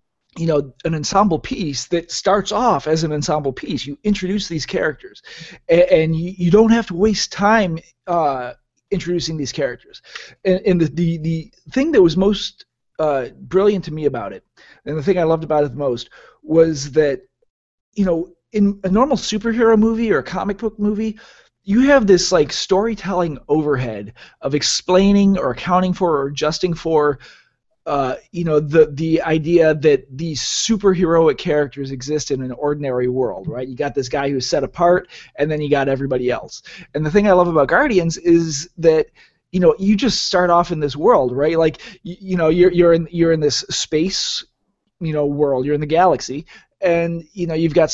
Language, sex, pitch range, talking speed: English, male, 145-190 Hz, 190 wpm